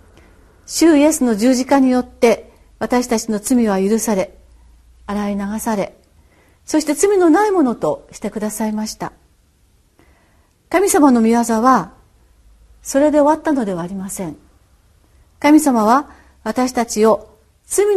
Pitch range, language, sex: 190-270 Hz, Japanese, female